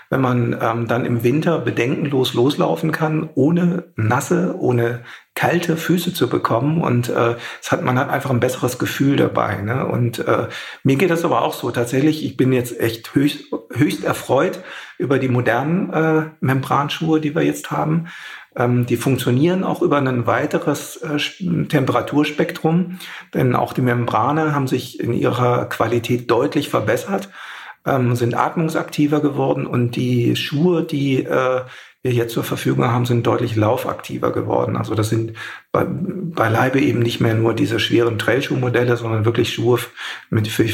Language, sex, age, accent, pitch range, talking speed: German, male, 50-69, German, 115-150 Hz, 160 wpm